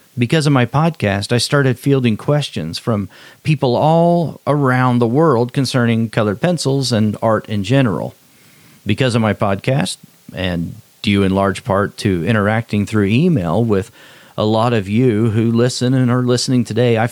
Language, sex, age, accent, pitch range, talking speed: English, male, 40-59, American, 110-135 Hz, 160 wpm